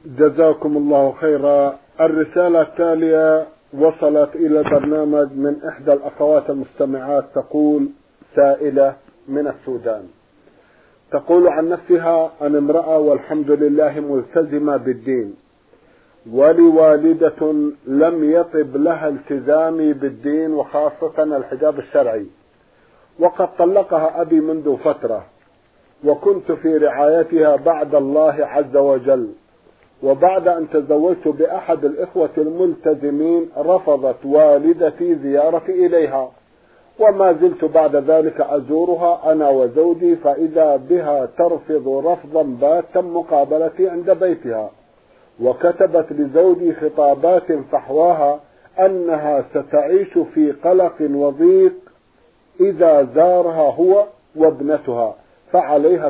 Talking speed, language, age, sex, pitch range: 90 wpm, Arabic, 50-69, male, 145-170 Hz